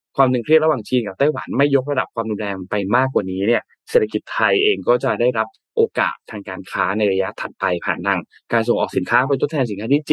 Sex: male